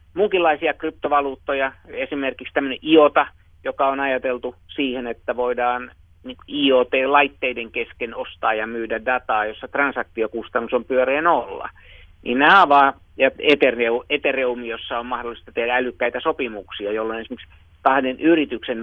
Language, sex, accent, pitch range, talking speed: Finnish, male, native, 115-140 Hz, 115 wpm